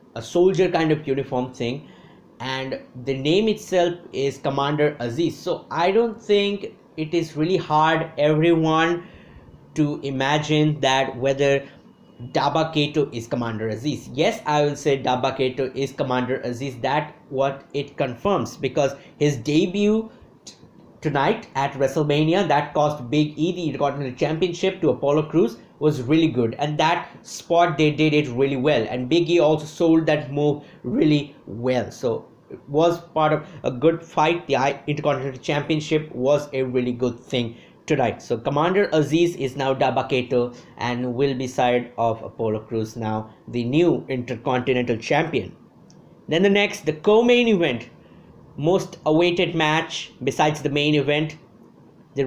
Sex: male